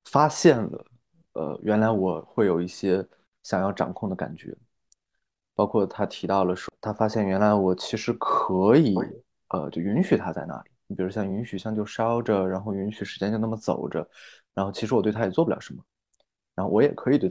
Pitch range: 100-120 Hz